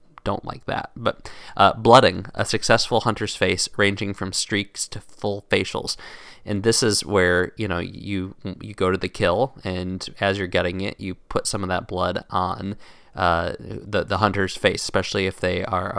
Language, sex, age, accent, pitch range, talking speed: English, male, 20-39, American, 95-115 Hz, 185 wpm